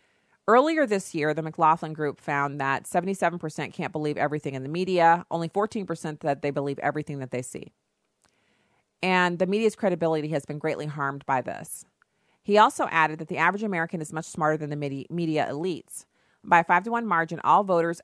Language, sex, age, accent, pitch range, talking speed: English, female, 40-59, American, 155-195 Hz, 185 wpm